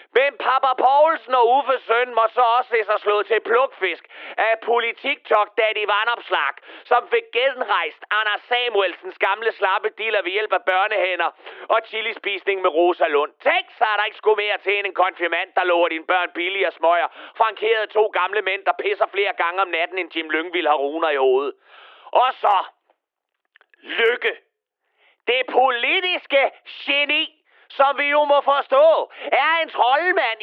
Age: 30-49